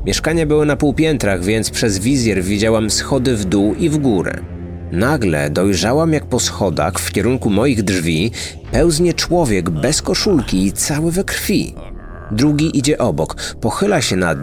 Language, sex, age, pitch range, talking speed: Polish, male, 30-49, 105-150 Hz, 155 wpm